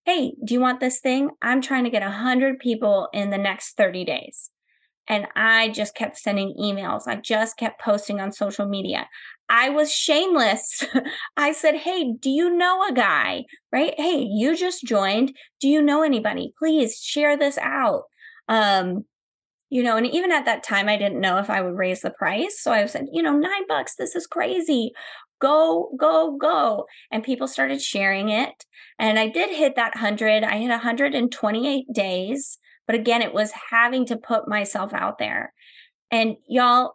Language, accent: English, American